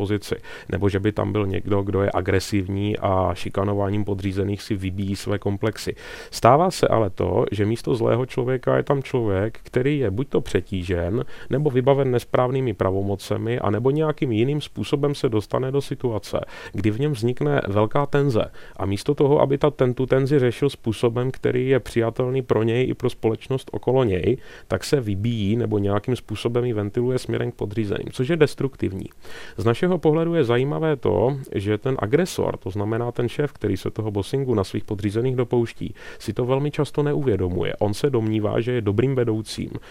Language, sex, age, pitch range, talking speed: Czech, male, 30-49, 100-130 Hz, 175 wpm